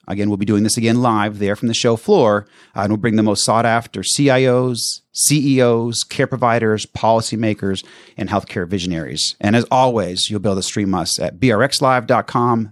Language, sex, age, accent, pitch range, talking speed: English, male, 30-49, American, 95-120 Hz, 180 wpm